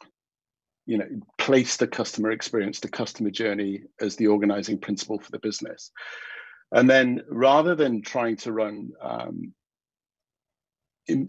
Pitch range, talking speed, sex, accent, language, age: 100-115 Hz, 135 wpm, male, British, English, 50-69